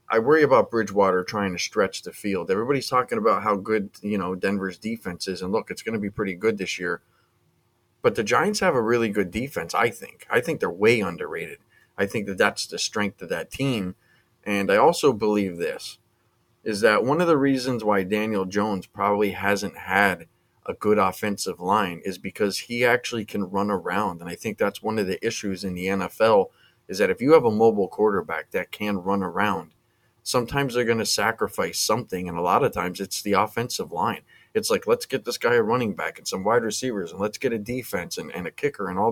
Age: 30-49